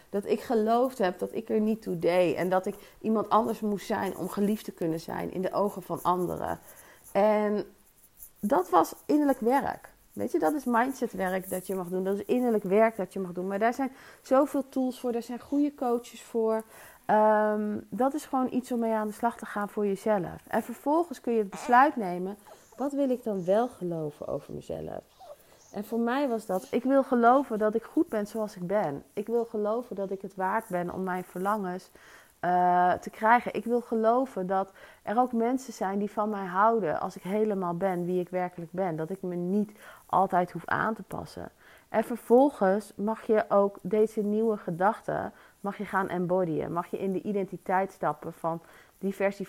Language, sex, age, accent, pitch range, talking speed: Dutch, female, 30-49, Dutch, 185-230 Hz, 200 wpm